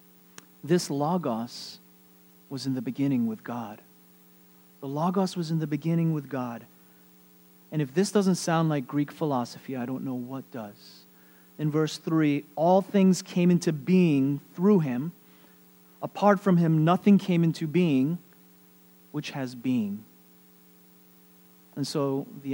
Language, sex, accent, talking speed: English, male, American, 140 wpm